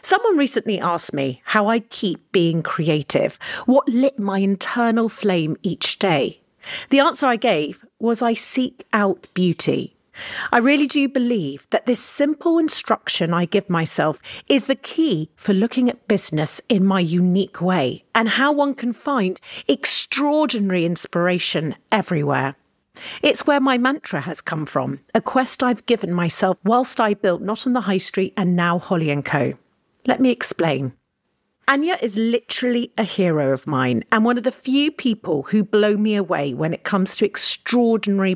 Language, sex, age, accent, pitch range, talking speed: English, female, 40-59, British, 180-265 Hz, 165 wpm